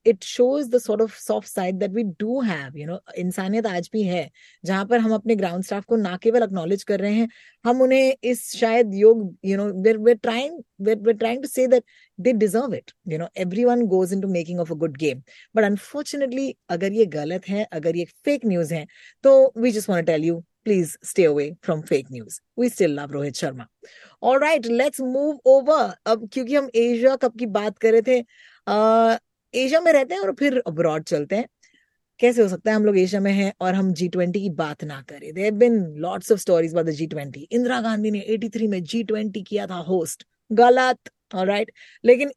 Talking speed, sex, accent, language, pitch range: 210 wpm, female, native, Hindi, 185-245 Hz